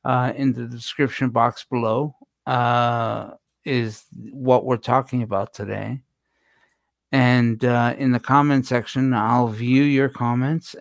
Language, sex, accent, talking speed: English, male, American, 130 wpm